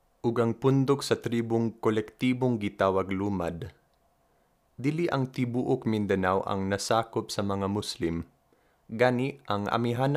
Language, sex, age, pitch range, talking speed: Filipino, male, 20-39, 100-120 Hz, 110 wpm